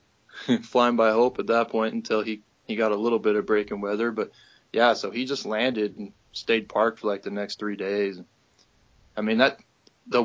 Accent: American